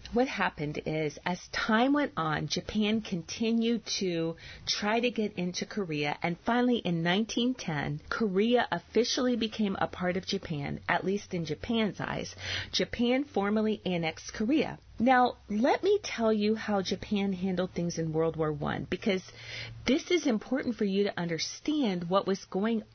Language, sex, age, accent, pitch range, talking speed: English, female, 40-59, American, 175-240 Hz, 155 wpm